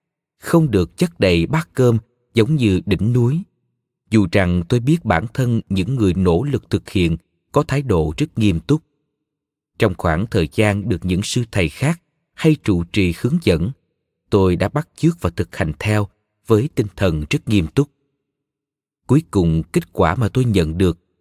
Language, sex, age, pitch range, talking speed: Vietnamese, male, 30-49, 95-135 Hz, 180 wpm